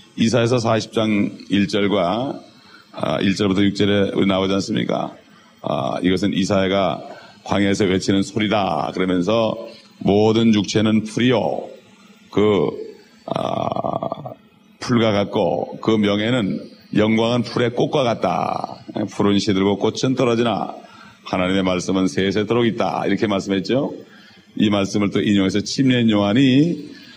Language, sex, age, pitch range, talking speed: English, male, 40-59, 95-115 Hz, 90 wpm